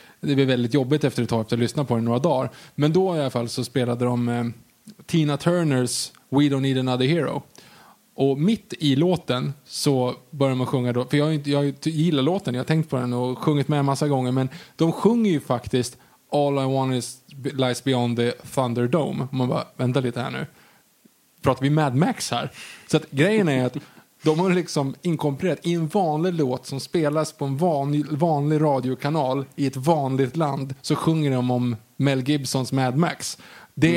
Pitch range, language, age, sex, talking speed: 125-155 Hz, Swedish, 20-39, male, 200 wpm